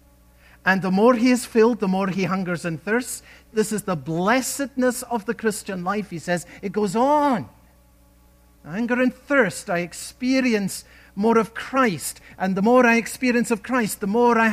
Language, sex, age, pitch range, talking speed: English, male, 50-69, 150-230 Hz, 180 wpm